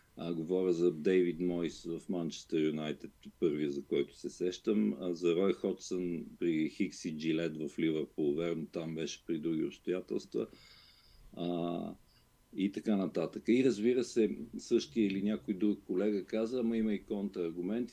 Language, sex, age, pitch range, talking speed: Bulgarian, male, 50-69, 85-105 Hz, 155 wpm